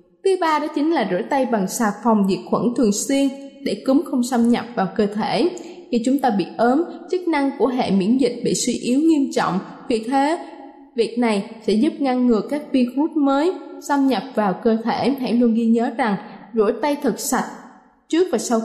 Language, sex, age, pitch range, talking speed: Vietnamese, female, 20-39, 225-290 Hz, 210 wpm